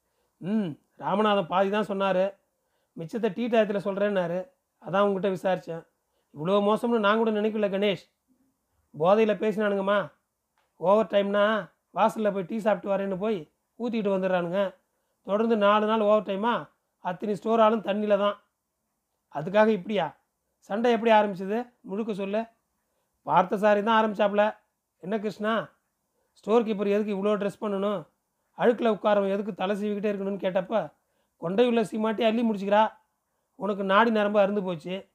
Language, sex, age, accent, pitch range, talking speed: Tamil, male, 40-59, native, 195-225 Hz, 125 wpm